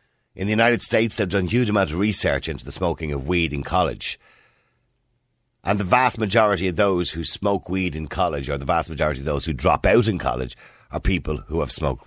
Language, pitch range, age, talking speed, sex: English, 85-130 Hz, 50-69, 225 wpm, male